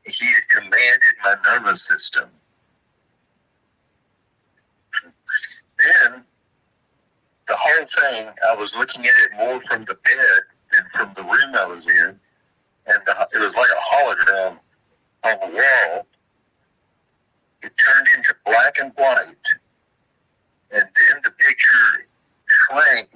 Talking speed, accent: 120 wpm, American